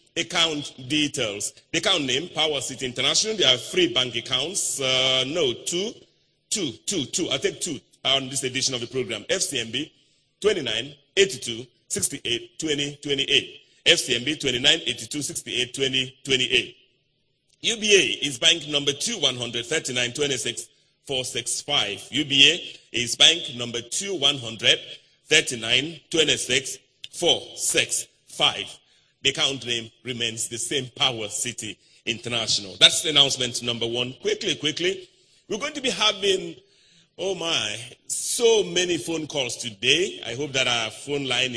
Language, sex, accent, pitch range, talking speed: English, male, Nigerian, 120-155 Hz, 115 wpm